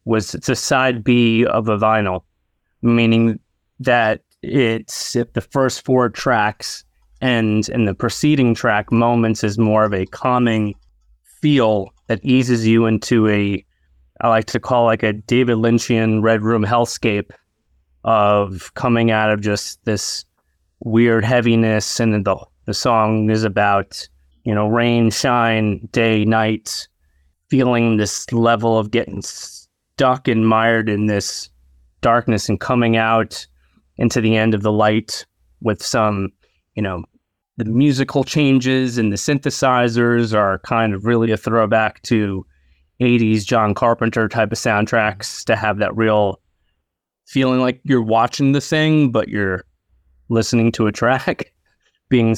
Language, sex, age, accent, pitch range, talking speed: English, male, 30-49, American, 105-120 Hz, 140 wpm